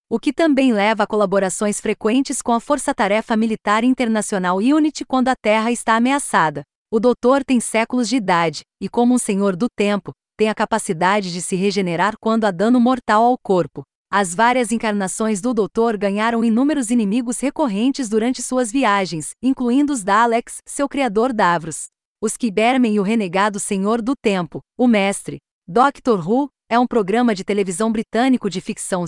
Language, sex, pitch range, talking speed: Portuguese, female, 205-250 Hz, 165 wpm